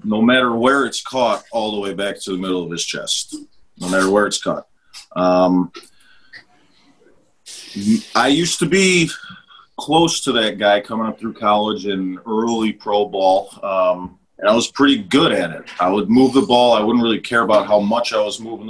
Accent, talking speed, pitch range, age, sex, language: American, 195 wpm, 100-125 Hz, 30-49, male, English